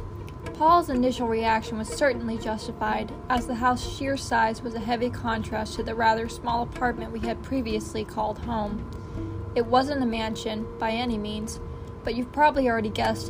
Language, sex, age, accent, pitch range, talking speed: English, female, 10-29, American, 225-255 Hz, 165 wpm